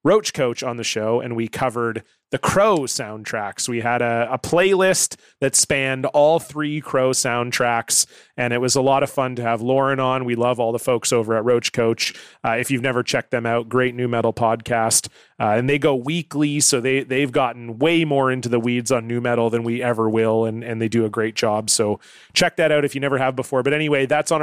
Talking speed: 235 wpm